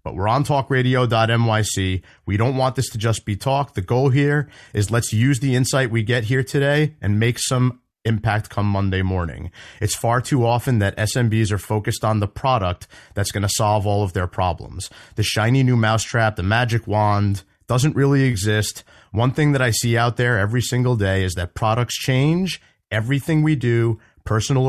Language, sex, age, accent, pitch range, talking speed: English, male, 30-49, American, 100-125 Hz, 190 wpm